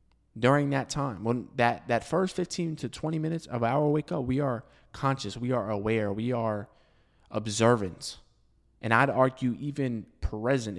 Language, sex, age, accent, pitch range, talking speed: English, male, 20-39, American, 105-145 Hz, 160 wpm